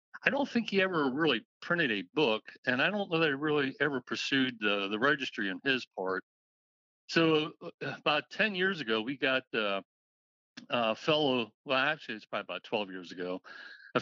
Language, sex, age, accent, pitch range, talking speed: English, male, 60-79, American, 110-155 Hz, 185 wpm